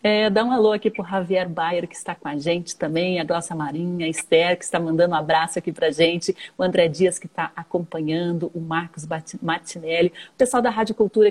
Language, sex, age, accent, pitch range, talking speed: Portuguese, female, 40-59, Brazilian, 175-215 Hz, 225 wpm